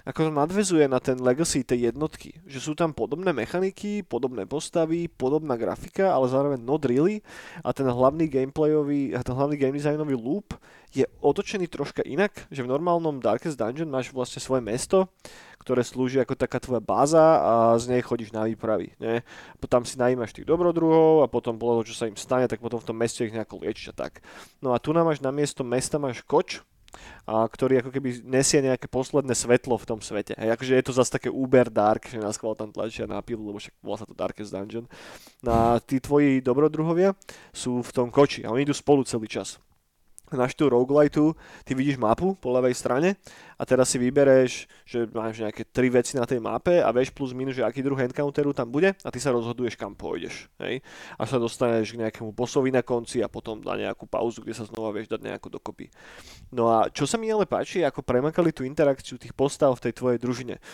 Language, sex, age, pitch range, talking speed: Slovak, male, 20-39, 120-145 Hz, 205 wpm